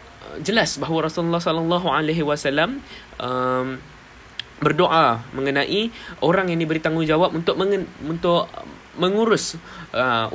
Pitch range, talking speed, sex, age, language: 140-190 Hz, 100 wpm, male, 20-39, Malay